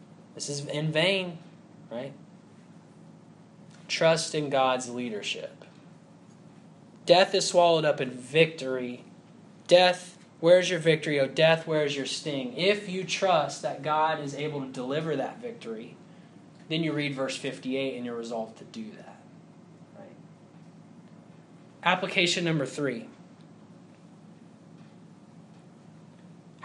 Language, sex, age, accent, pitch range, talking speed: English, male, 20-39, American, 145-185 Hz, 110 wpm